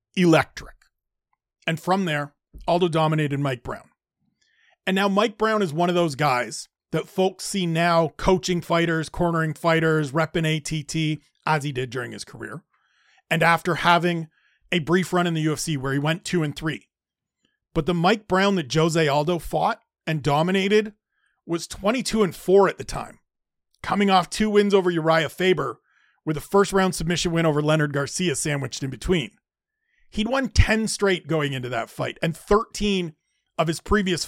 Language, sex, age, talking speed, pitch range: English, male, 40-59, 170 wpm, 160-205 Hz